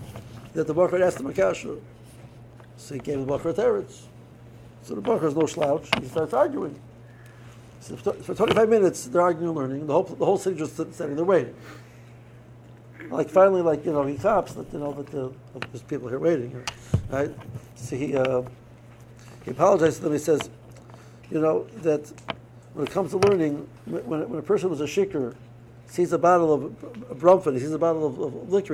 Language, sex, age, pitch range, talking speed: English, male, 60-79, 120-165 Hz, 205 wpm